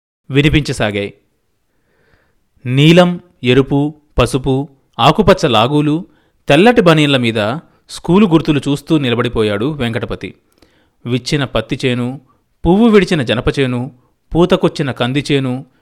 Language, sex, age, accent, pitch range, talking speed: Telugu, male, 30-49, native, 115-155 Hz, 75 wpm